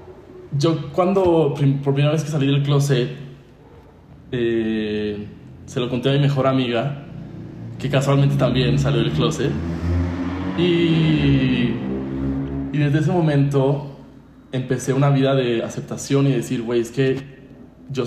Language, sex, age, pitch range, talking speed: English, male, 20-39, 110-140 Hz, 130 wpm